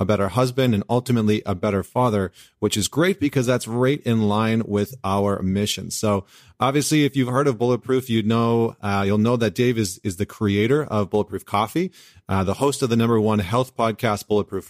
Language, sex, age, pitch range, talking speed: English, male, 30-49, 100-120 Hz, 210 wpm